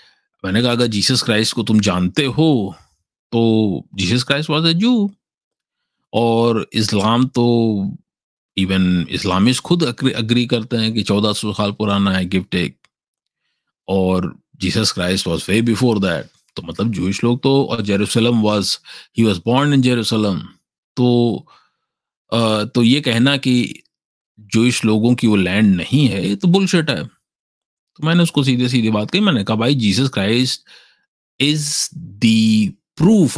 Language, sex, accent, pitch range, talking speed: English, male, Indian, 105-130 Hz, 130 wpm